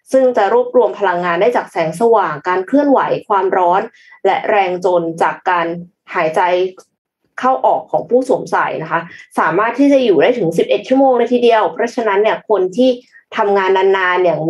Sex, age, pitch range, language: female, 20-39, 180-260 Hz, Thai